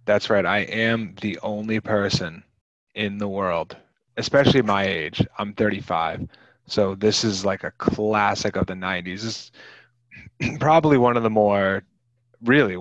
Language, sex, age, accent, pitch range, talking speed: English, male, 30-49, American, 100-120 Hz, 145 wpm